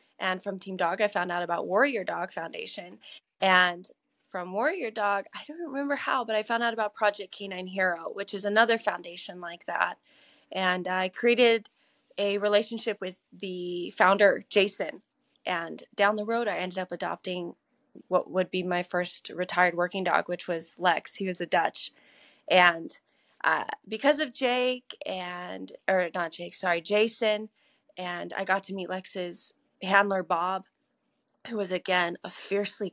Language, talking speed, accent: English, 160 wpm, American